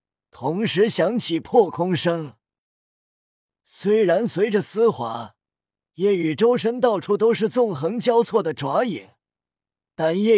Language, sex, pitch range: Chinese, male, 160-225 Hz